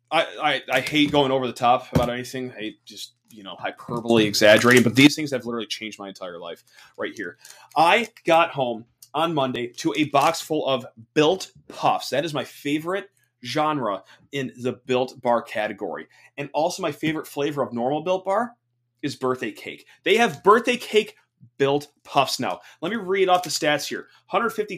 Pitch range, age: 130-165 Hz, 30-49